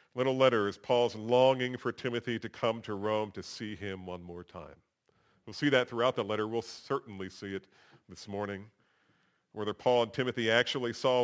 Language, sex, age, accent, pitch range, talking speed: English, male, 40-59, American, 110-130 Hz, 185 wpm